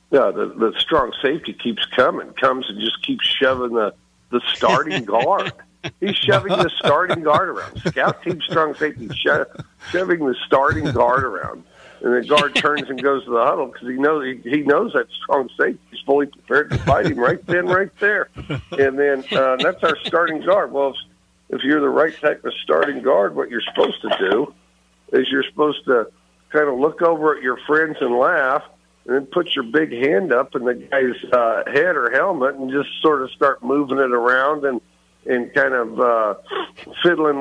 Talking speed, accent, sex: 195 wpm, American, male